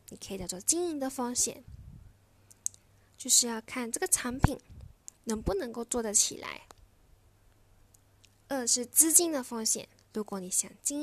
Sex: female